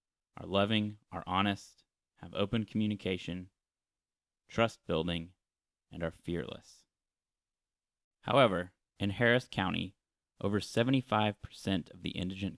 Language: English